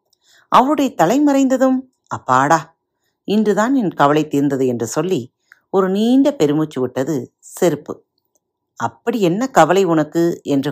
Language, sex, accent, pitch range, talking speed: Tamil, female, native, 145-230 Hz, 105 wpm